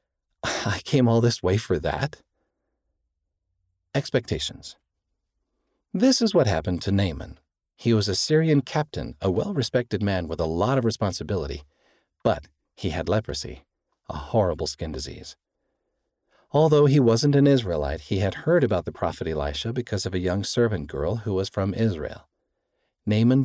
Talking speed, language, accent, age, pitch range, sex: 150 wpm, English, American, 40-59, 90-125 Hz, male